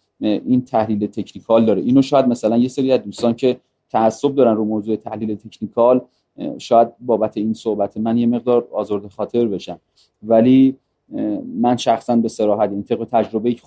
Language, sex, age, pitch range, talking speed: Persian, male, 30-49, 105-135 Hz, 160 wpm